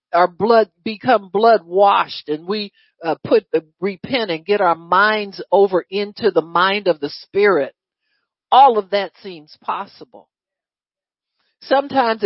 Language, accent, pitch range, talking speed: English, American, 180-245 Hz, 135 wpm